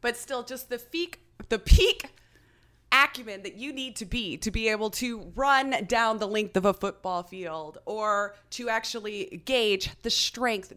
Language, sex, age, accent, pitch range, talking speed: English, female, 30-49, American, 185-250 Hz, 165 wpm